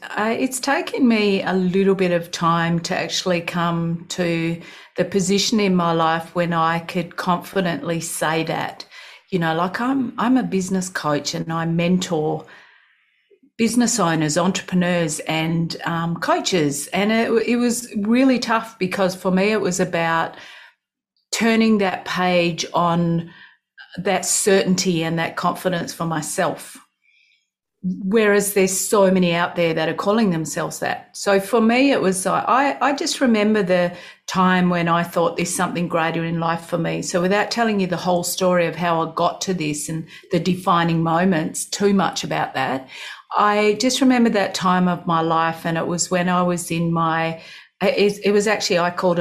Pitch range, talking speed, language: 170-200 Hz, 170 wpm, English